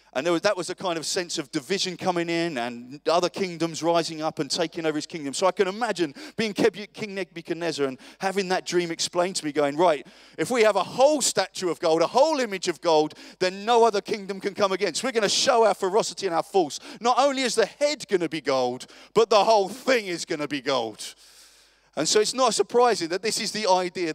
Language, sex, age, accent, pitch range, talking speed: English, male, 30-49, British, 165-220 Hz, 235 wpm